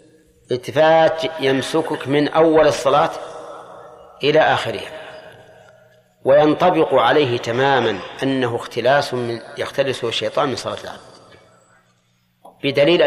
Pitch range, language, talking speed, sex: 120-155 Hz, Arabic, 85 wpm, male